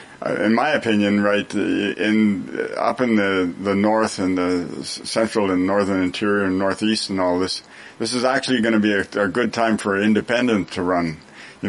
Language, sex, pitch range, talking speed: English, male, 95-115 Hz, 185 wpm